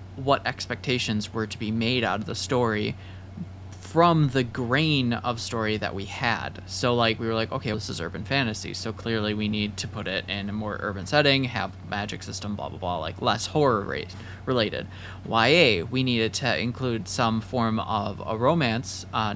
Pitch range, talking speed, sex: 100-130 Hz, 195 wpm, male